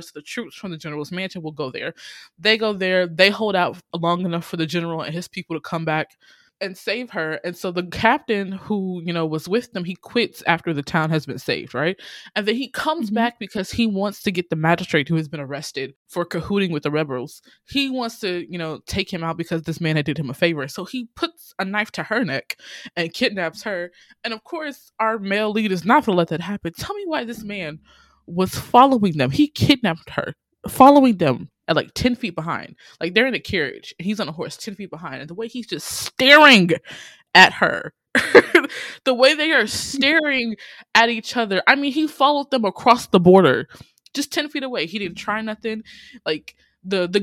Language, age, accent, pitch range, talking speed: English, 20-39, American, 165-230 Hz, 225 wpm